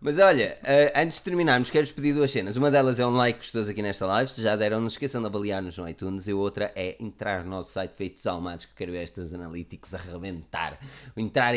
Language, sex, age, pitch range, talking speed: Portuguese, male, 20-39, 110-150 Hz, 230 wpm